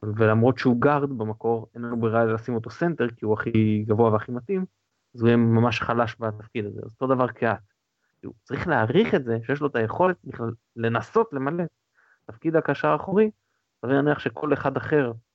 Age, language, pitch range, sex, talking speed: 20-39, Hebrew, 110-140 Hz, male, 180 wpm